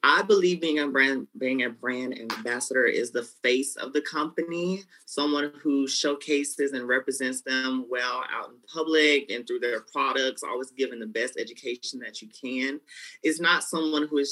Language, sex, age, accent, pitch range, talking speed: English, male, 30-49, American, 120-150 Hz, 175 wpm